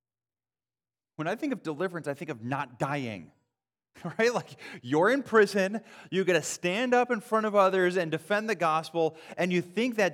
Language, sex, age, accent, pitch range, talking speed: English, male, 30-49, American, 110-160 Hz, 190 wpm